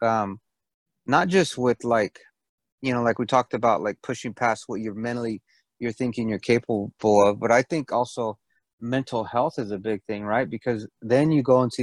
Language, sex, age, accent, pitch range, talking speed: English, male, 30-49, American, 110-130 Hz, 195 wpm